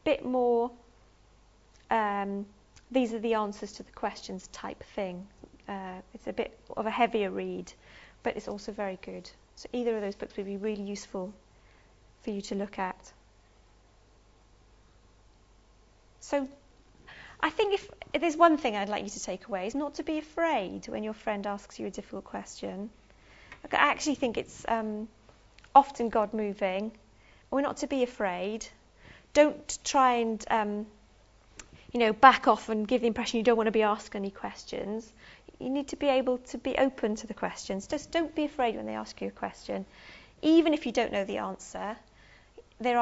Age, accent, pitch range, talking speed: 30-49, British, 180-250 Hz, 180 wpm